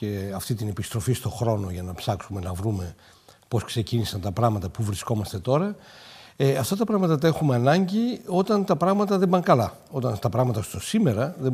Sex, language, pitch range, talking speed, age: male, Greek, 110-180 Hz, 190 wpm, 60-79